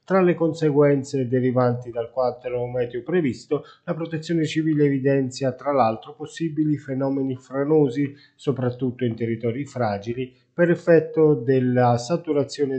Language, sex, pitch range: Italian, male, 125-155 Hz